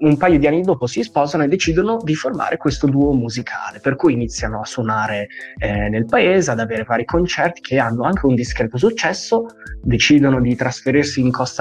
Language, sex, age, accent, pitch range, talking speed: Italian, male, 20-39, native, 120-150 Hz, 190 wpm